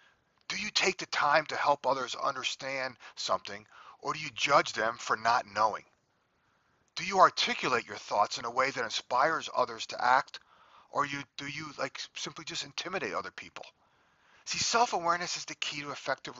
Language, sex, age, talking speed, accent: English, male, 40-59, 170 wpm, American